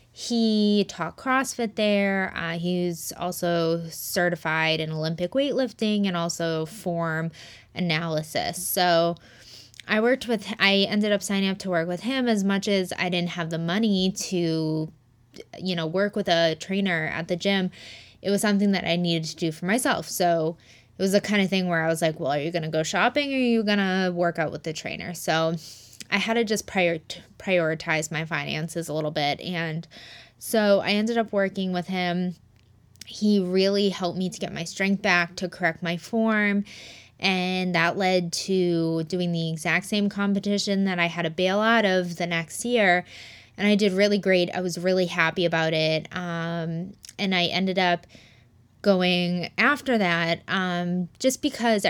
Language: English